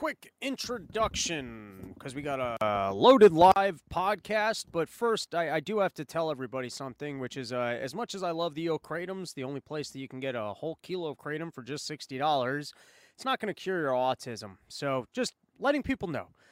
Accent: American